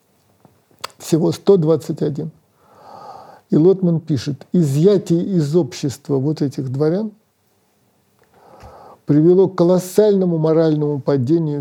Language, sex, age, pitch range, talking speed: Russian, male, 50-69, 135-175 Hz, 85 wpm